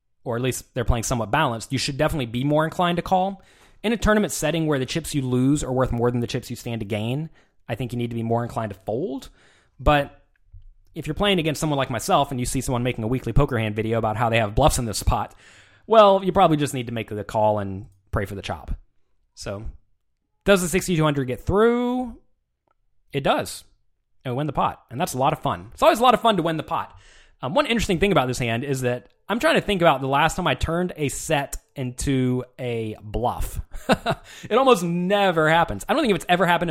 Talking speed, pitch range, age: 240 wpm, 115-180 Hz, 20-39